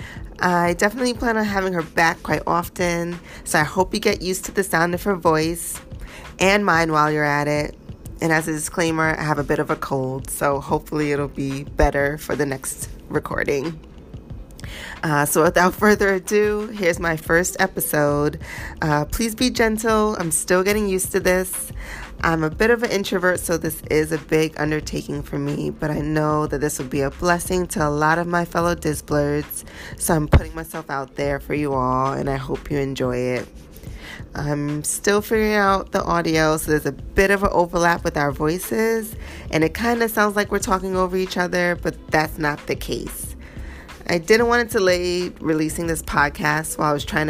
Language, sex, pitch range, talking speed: English, female, 145-185 Hz, 195 wpm